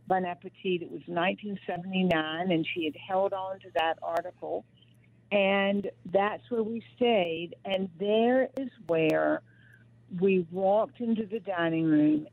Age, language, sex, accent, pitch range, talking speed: 50-69, English, female, American, 165-200 Hz, 135 wpm